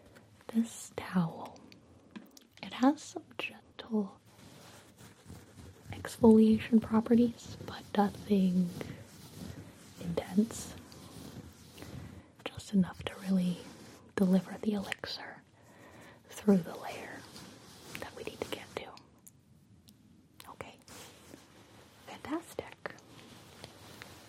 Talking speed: 70 wpm